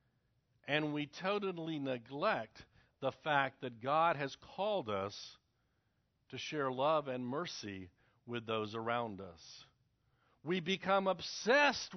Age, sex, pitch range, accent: 60-79, male, 120-175 Hz, American